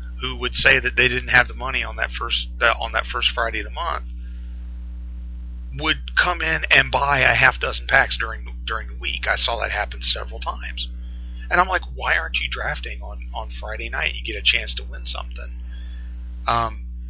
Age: 40-59